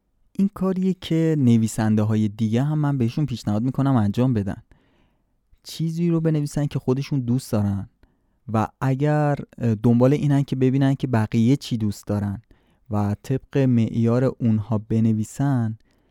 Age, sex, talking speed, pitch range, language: 20-39, male, 135 wpm, 110-145 Hz, Persian